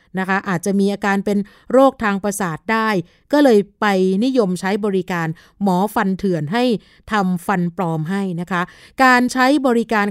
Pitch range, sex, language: 185-230 Hz, female, Thai